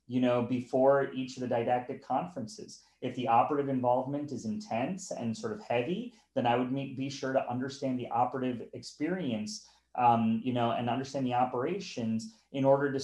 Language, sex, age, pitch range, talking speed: English, male, 30-49, 120-150 Hz, 180 wpm